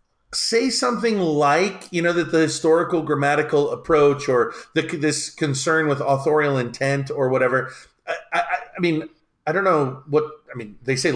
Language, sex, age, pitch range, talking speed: English, male, 40-59, 130-160 Hz, 160 wpm